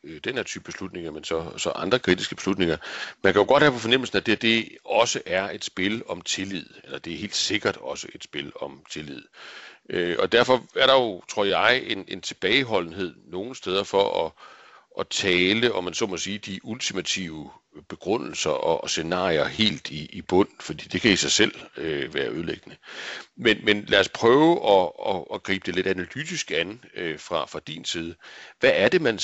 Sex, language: male, Danish